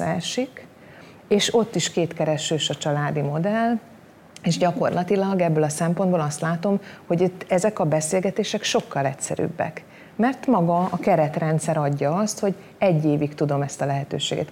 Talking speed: 145 wpm